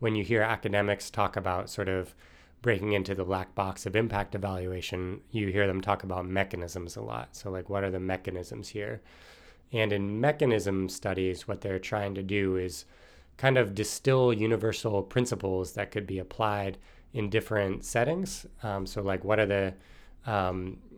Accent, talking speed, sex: American, 170 wpm, male